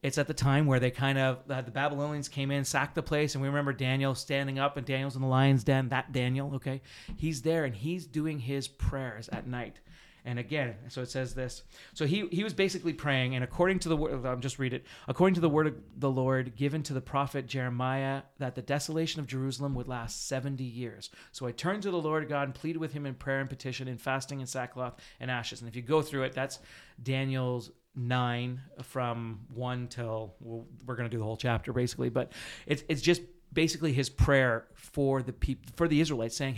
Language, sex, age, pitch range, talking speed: English, male, 30-49, 125-150 Hz, 225 wpm